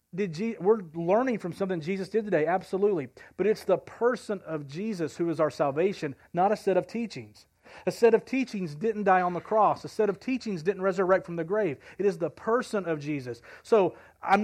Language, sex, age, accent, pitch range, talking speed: English, male, 40-59, American, 170-215 Hz, 205 wpm